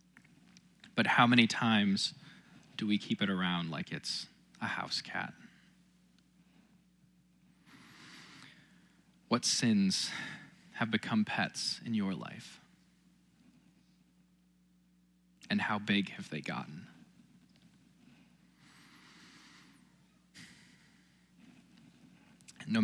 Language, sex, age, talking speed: English, male, 20-39, 75 wpm